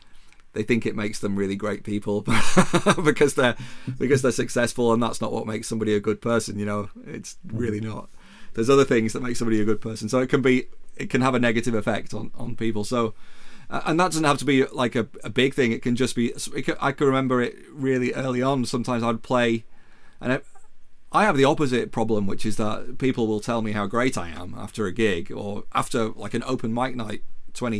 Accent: British